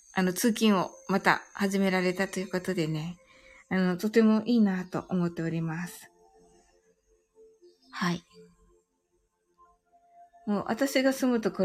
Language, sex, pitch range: Japanese, female, 180-255 Hz